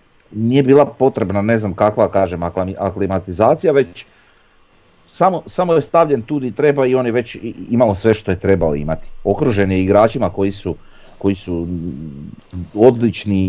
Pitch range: 90-105 Hz